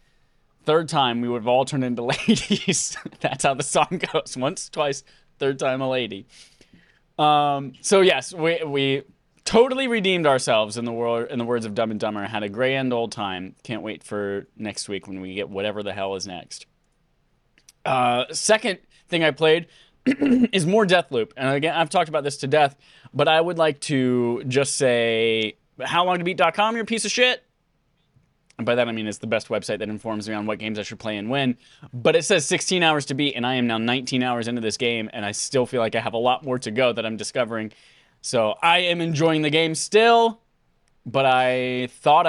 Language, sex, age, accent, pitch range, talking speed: English, male, 20-39, American, 115-155 Hz, 210 wpm